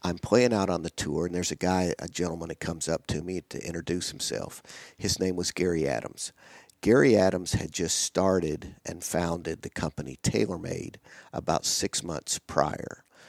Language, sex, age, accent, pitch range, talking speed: English, male, 50-69, American, 85-95 Hz, 175 wpm